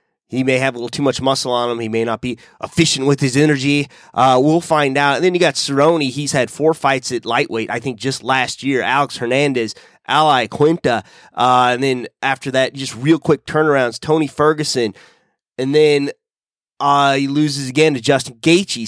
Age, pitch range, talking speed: 30-49, 125-155 Hz, 195 wpm